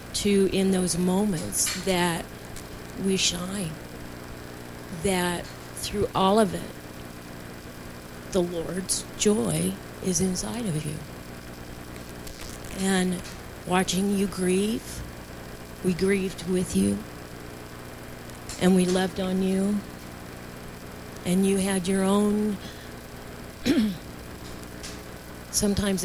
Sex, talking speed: female, 90 wpm